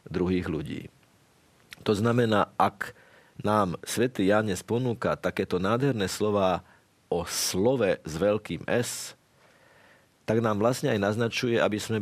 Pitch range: 95-120 Hz